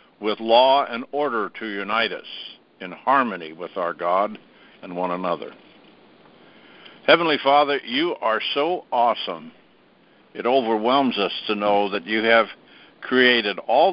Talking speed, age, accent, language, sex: 135 wpm, 60-79, American, English, male